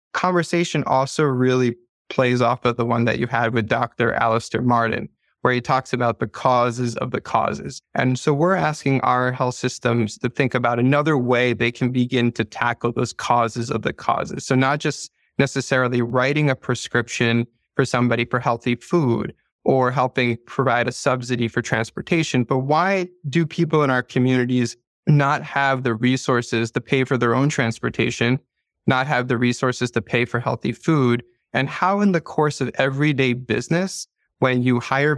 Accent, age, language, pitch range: American, 20-39, English, 120-140 Hz